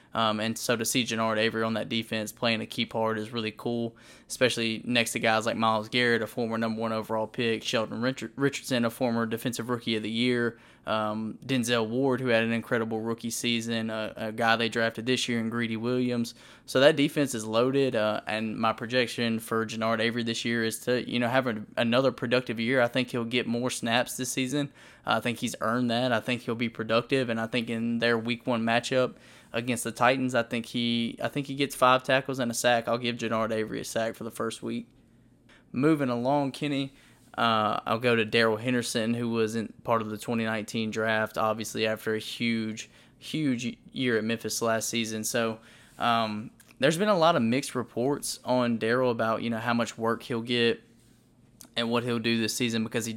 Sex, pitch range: male, 110-125 Hz